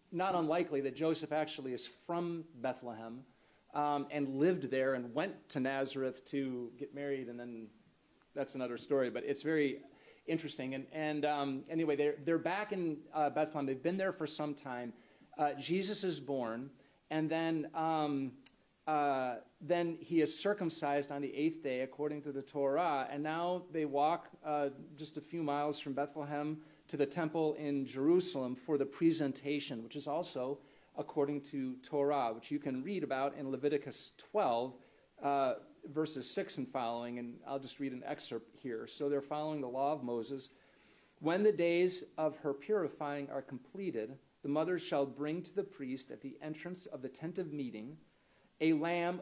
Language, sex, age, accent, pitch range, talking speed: English, male, 40-59, American, 135-160 Hz, 170 wpm